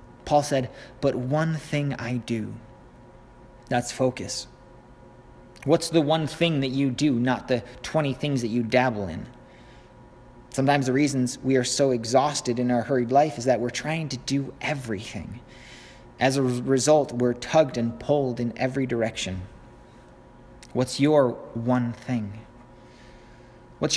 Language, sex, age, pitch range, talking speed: English, male, 30-49, 110-145 Hz, 145 wpm